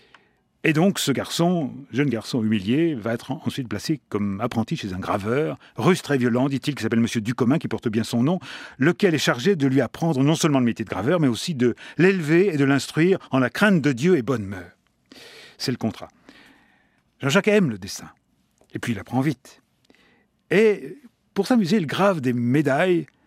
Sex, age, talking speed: male, 40-59, 195 wpm